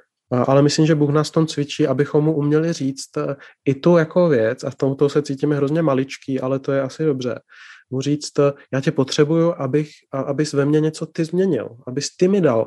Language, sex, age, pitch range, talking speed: Czech, male, 30-49, 130-155 Hz, 205 wpm